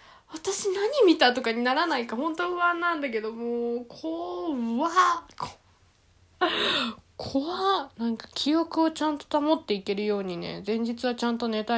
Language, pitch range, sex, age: Japanese, 205-310 Hz, female, 10-29